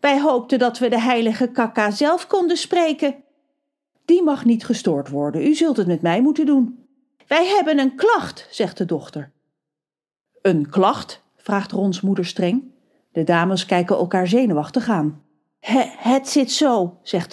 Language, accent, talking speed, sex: Dutch, Dutch, 155 wpm, female